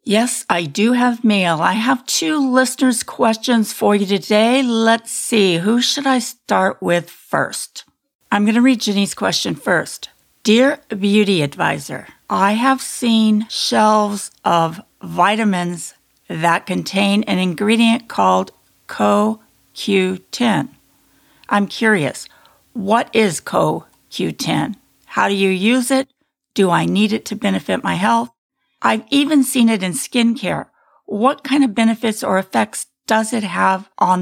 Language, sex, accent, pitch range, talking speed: English, female, American, 190-245 Hz, 135 wpm